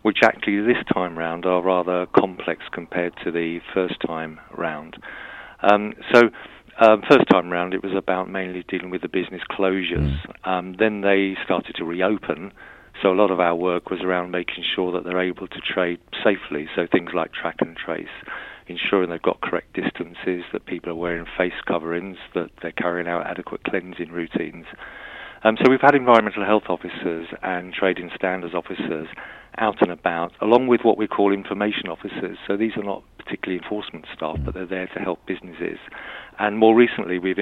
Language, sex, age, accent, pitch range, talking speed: English, male, 40-59, British, 90-100 Hz, 180 wpm